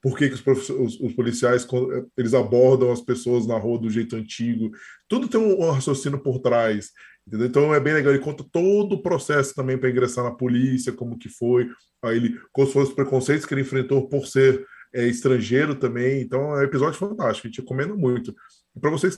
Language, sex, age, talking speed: Portuguese, male, 20-39, 210 wpm